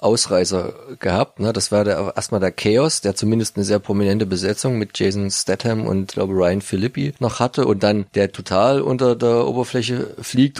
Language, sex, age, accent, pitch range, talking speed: German, male, 30-49, German, 100-115 Hz, 175 wpm